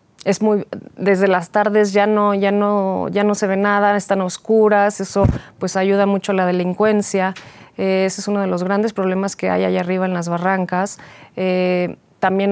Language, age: Spanish, 30-49